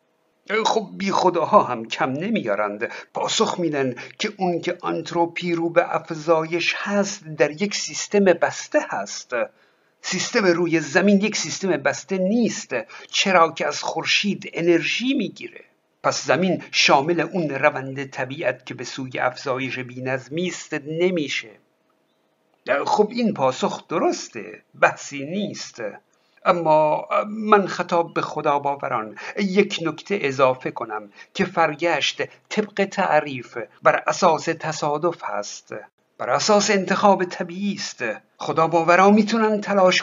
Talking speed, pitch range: 120 wpm, 155-195 Hz